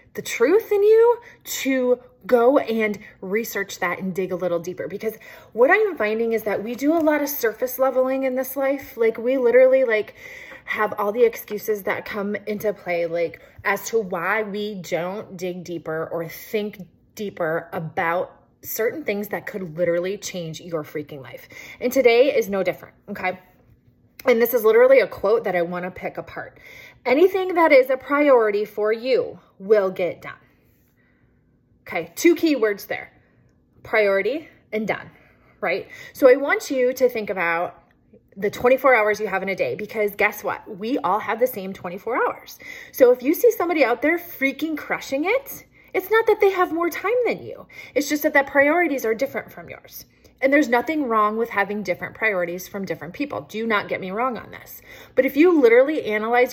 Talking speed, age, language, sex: 185 wpm, 20-39, English, female